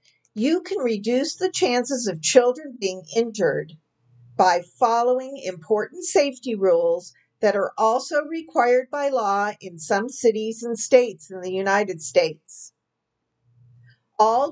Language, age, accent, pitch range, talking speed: English, 50-69, American, 195-265 Hz, 125 wpm